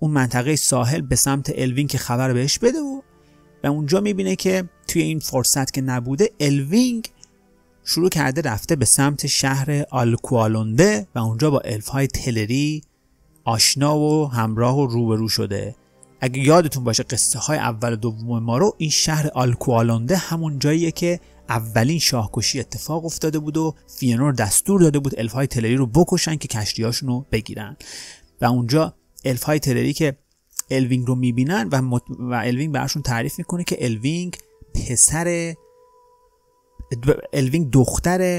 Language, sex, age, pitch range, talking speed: Persian, male, 30-49, 120-155 Hz, 145 wpm